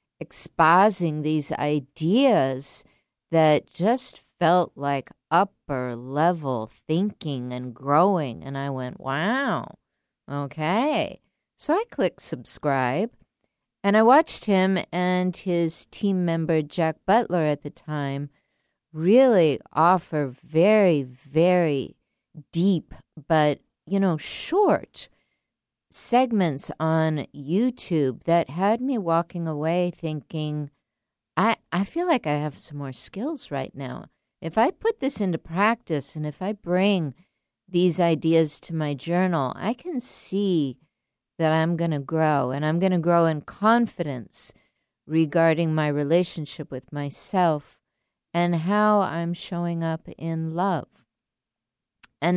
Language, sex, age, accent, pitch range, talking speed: English, female, 50-69, American, 150-190 Hz, 120 wpm